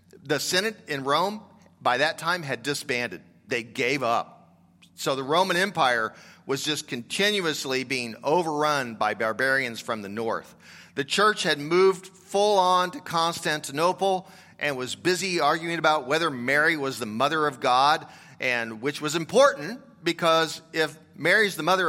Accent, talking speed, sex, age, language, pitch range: American, 150 wpm, male, 40-59, English, 140-190 Hz